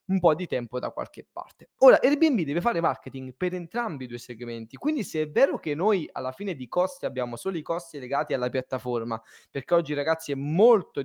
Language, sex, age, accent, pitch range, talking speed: Italian, male, 20-39, native, 140-195 Hz, 210 wpm